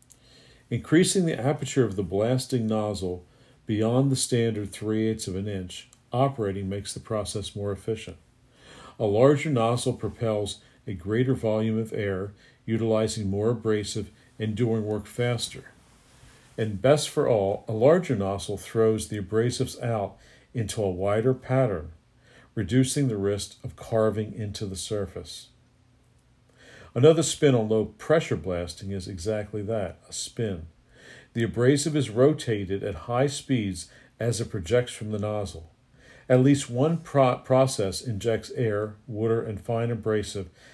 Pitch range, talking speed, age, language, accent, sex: 105-130 Hz, 135 wpm, 50-69, English, American, male